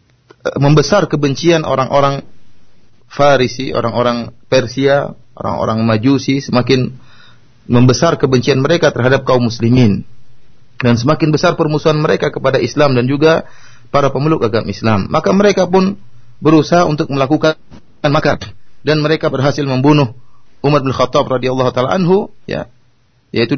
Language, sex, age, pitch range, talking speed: Malay, male, 30-49, 120-150 Hz, 120 wpm